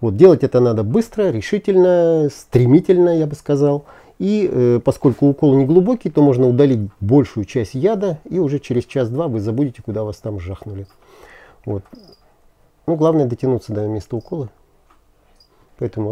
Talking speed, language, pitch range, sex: 140 wpm, Russian, 120-160 Hz, male